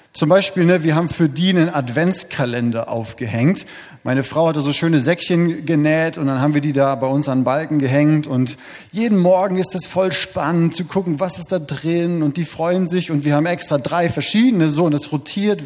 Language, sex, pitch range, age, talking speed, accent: German, male, 140-170 Hz, 30-49, 220 wpm, German